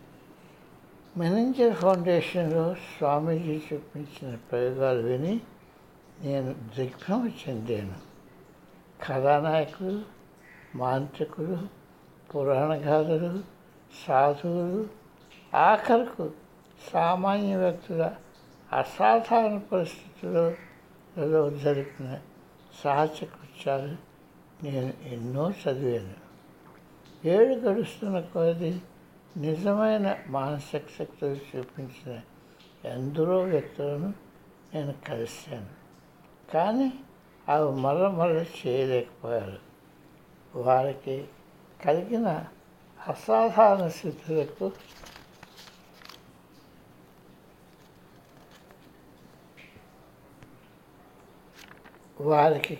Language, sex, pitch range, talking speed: Telugu, male, 135-180 Hz, 50 wpm